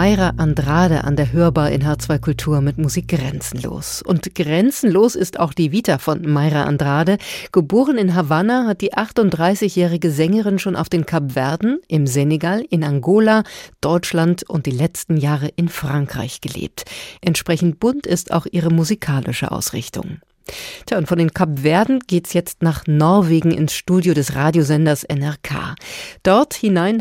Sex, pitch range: female, 155-200 Hz